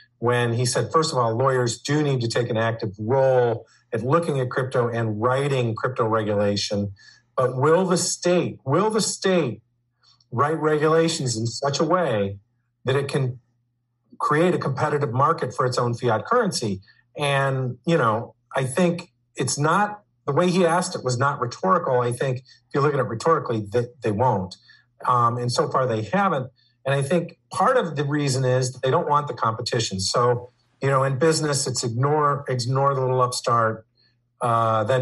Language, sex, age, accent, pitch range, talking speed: English, male, 50-69, American, 120-145 Hz, 180 wpm